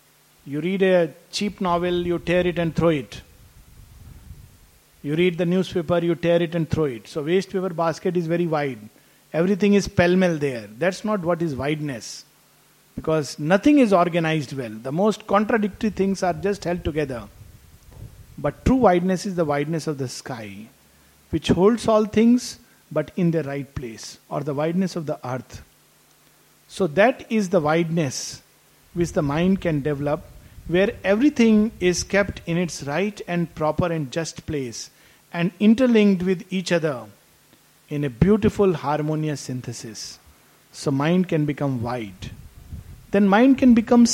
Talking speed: 155 wpm